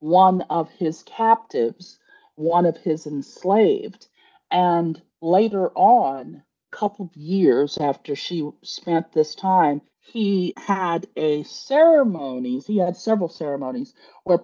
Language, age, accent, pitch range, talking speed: English, 50-69, American, 150-210 Hz, 120 wpm